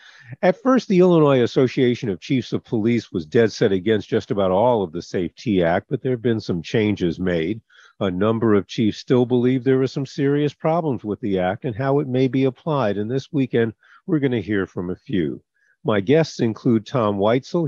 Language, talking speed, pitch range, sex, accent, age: English, 210 wpm, 105-135 Hz, male, American, 50-69